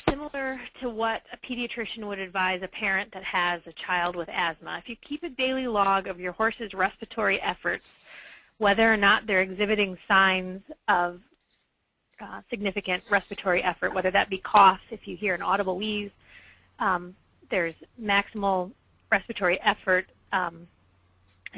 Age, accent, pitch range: 30-49, American, 185-220 Hz